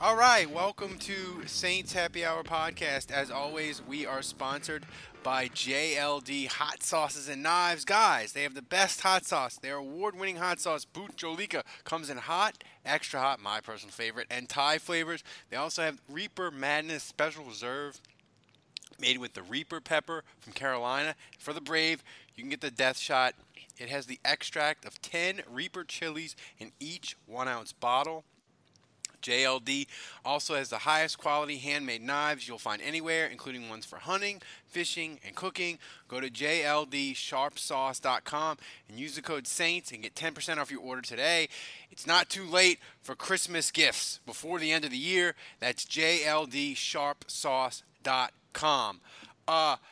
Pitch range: 135-170 Hz